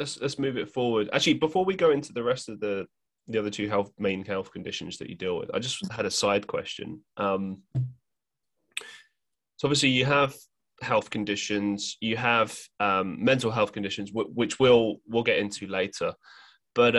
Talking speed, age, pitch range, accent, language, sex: 180 wpm, 20-39, 100-140 Hz, British, English, male